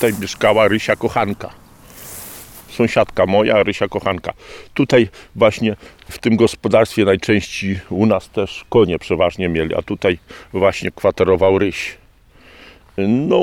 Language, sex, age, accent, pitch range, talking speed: Polish, male, 50-69, native, 90-110 Hz, 115 wpm